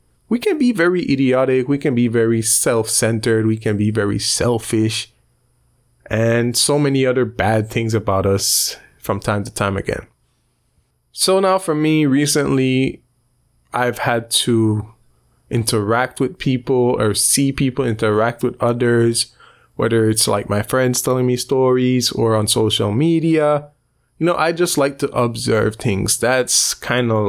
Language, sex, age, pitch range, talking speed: English, male, 20-39, 110-130 Hz, 150 wpm